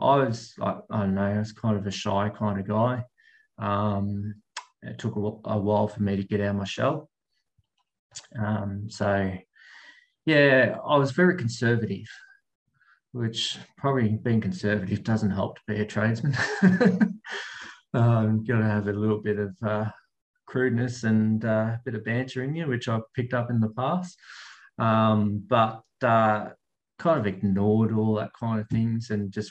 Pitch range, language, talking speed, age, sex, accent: 105-125 Hz, English, 165 wpm, 20-39, male, Australian